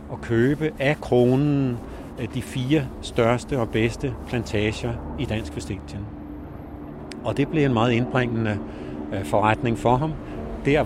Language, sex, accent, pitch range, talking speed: Danish, male, native, 110-135 Hz, 125 wpm